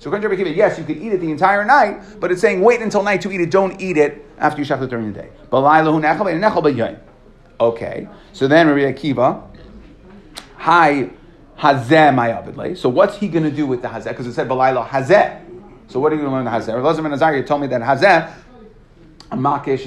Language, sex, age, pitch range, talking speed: English, male, 30-49, 125-170 Hz, 200 wpm